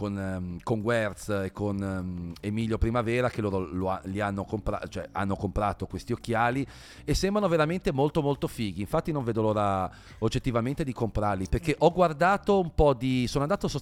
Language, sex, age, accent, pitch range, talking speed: Italian, male, 40-59, native, 105-140 Hz, 180 wpm